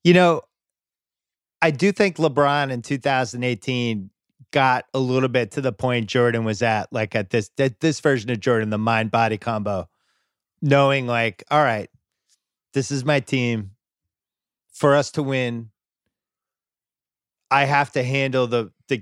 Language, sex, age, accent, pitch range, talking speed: English, male, 30-49, American, 115-140 Hz, 145 wpm